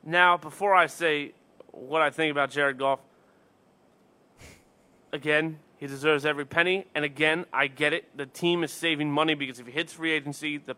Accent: American